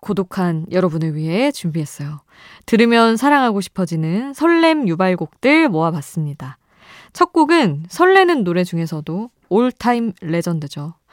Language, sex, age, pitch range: Korean, female, 20-39, 160-270 Hz